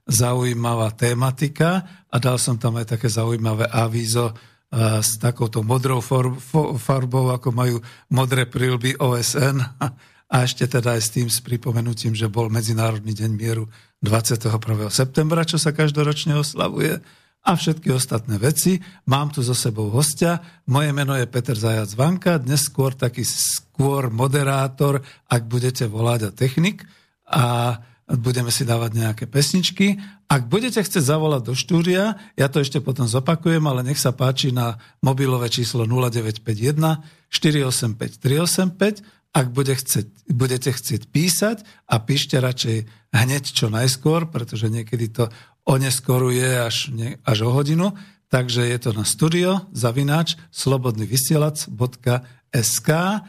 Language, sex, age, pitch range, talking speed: Slovak, male, 50-69, 120-150 Hz, 130 wpm